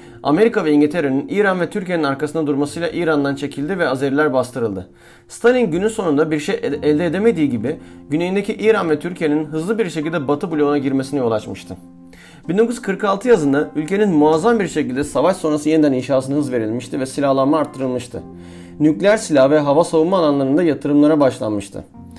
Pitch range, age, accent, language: 130-170 Hz, 40-59, native, Turkish